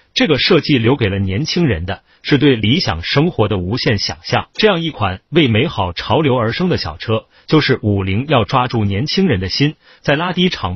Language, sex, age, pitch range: Chinese, male, 30-49, 105-145 Hz